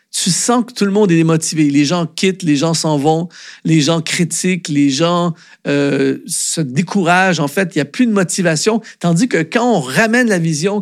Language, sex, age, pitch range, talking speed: French, male, 50-69, 165-215 Hz, 210 wpm